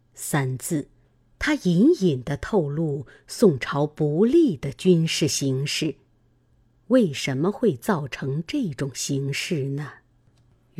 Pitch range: 135-205 Hz